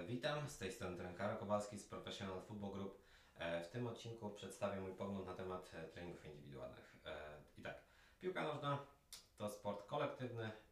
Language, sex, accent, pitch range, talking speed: Polish, male, native, 90-115 Hz, 150 wpm